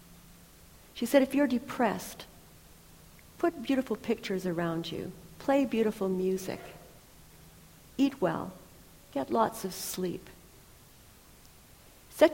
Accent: American